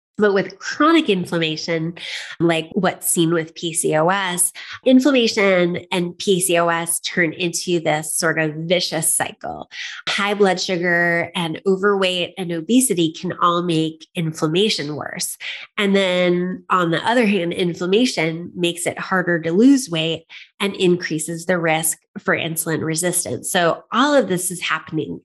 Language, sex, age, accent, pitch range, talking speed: English, female, 30-49, American, 160-185 Hz, 135 wpm